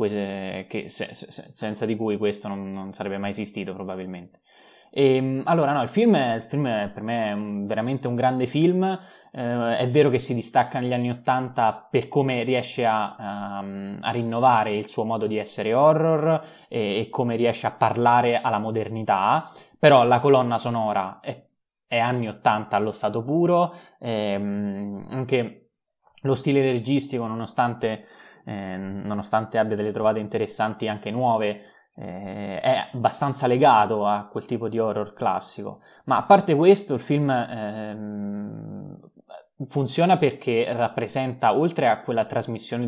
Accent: native